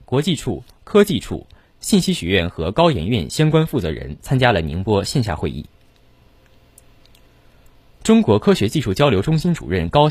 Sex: male